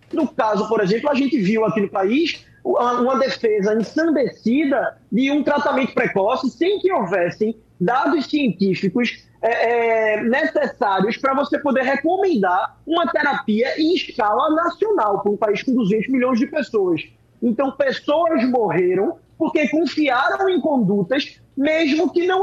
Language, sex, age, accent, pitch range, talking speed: Portuguese, male, 20-39, Brazilian, 230-310 Hz, 135 wpm